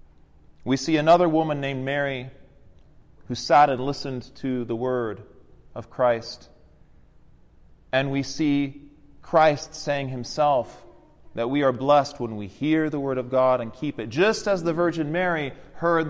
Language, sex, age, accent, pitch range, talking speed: English, male, 30-49, American, 120-160 Hz, 155 wpm